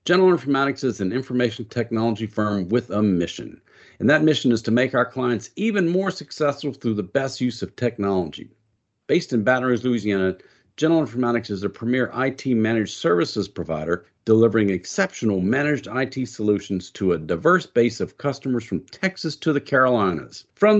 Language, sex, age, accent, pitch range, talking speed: English, male, 50-69, American, 105-145 Hz, 165 wpm